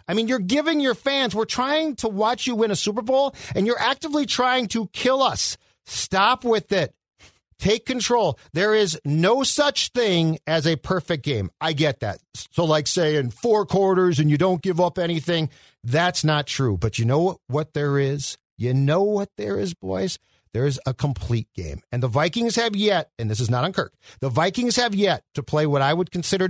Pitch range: 135-195 Hz